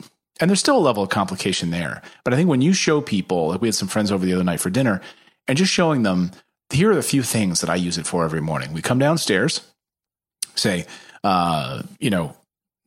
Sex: male